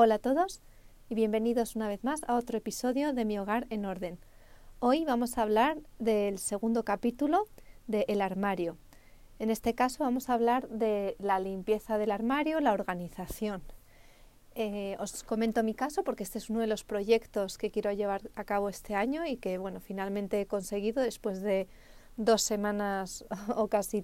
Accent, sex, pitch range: Spanish, female, 195-230 Hz